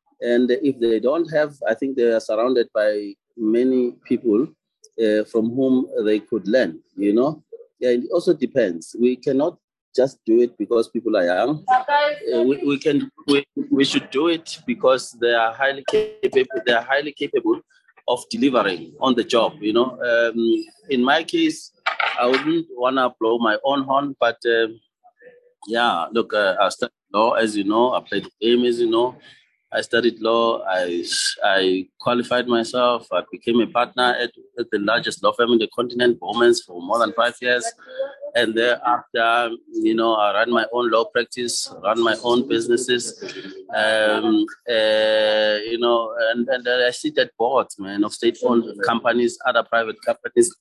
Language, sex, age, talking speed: English, male, 30-49, 170 wpm